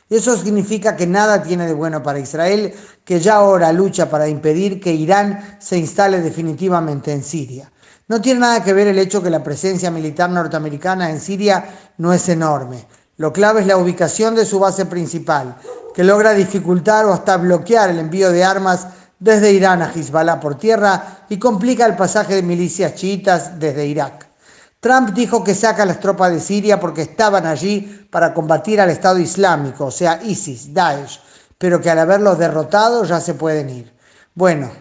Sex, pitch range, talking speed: male, 160-200 Hz, 180 wpm